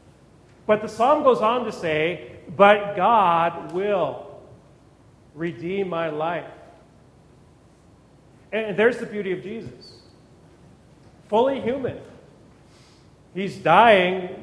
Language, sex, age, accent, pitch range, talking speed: English, male, 40-59, American, 145-195 Hz, 95 wpm